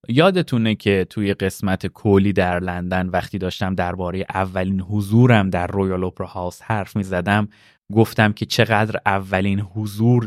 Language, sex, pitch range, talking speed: Persian, male, 100-145 Hz, 135 wpm